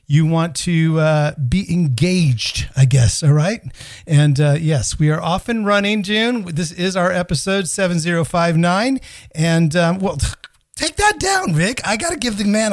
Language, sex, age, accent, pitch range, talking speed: English, male, 40-59, American, 135-175 Hz, 175 wpm